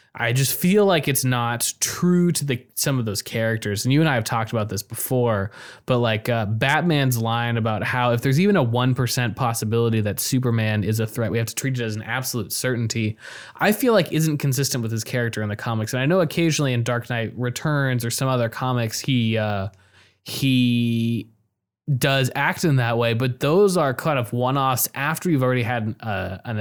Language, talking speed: English, 210 wpm